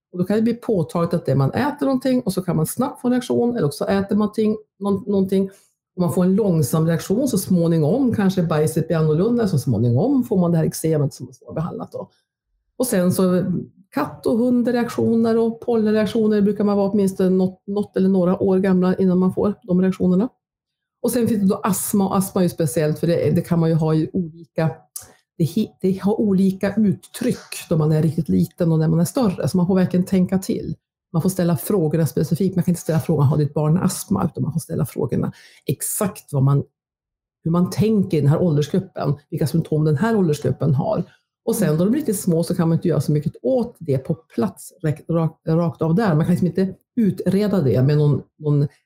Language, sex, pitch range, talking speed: Swedish, female, 160-205 Hz, 215 wpm